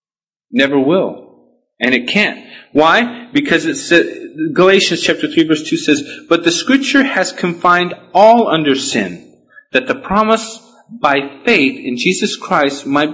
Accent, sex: American, male